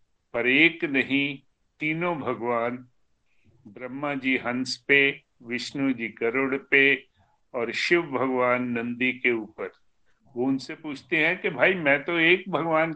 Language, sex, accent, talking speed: Hindi, male, native, 130 wpm